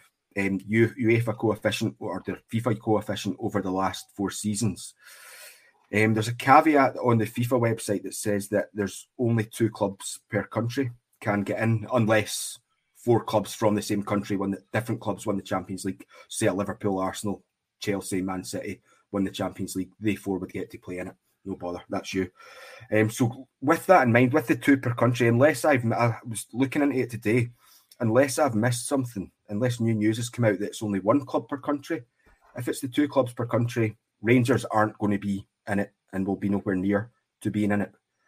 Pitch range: 95-120 Hz